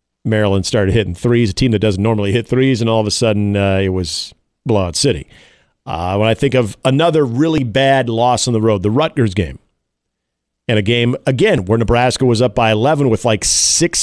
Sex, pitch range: male, 105-130 Hz